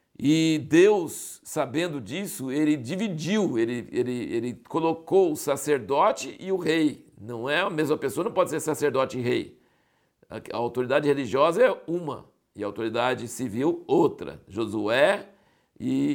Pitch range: 130-190 Hz